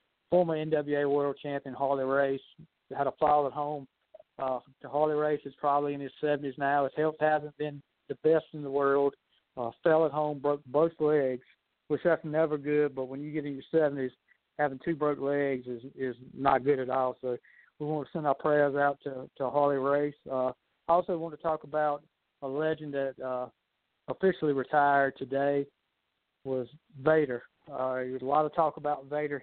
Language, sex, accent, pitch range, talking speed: English, male, American, 135-150 Hz, 190 wpm